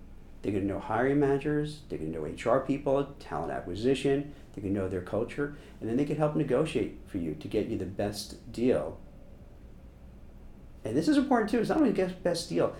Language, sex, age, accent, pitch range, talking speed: English, male, 50-69, American, 100-135 Hz, 195 wpm